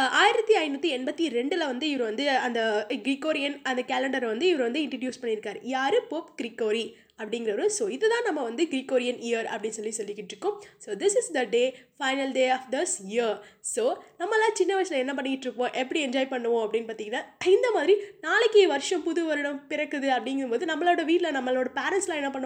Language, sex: Tamil, female